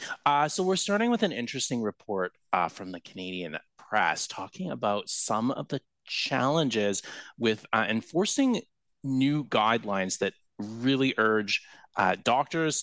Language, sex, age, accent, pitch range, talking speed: English, male, 30-49, American, 100-135 Hz, 135 wpm